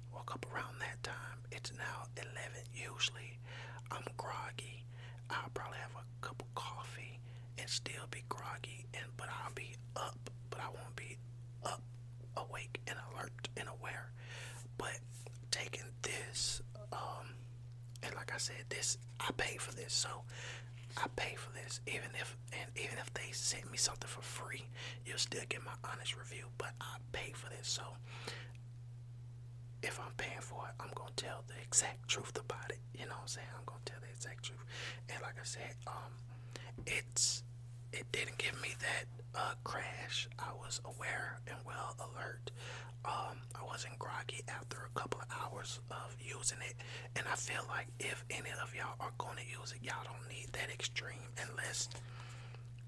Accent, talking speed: American, 170 wpm